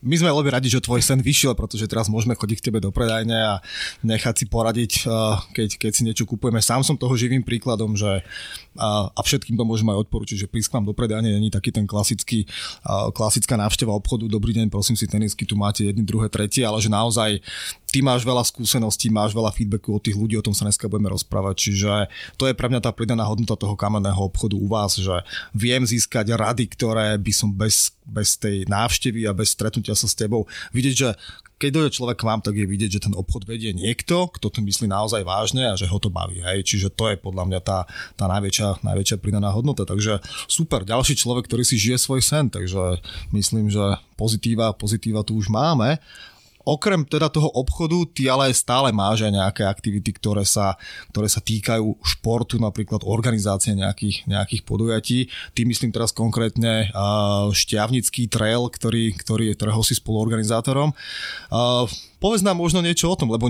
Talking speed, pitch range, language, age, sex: 190 wpm, 105-120 Hz, Slovak, 20-39, male